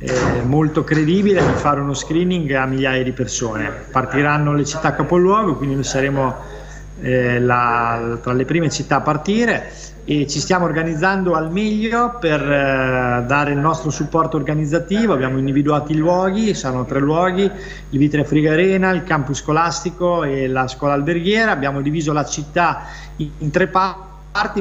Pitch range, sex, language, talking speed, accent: 140-170 Hz, male, Italian, 155 wpm, native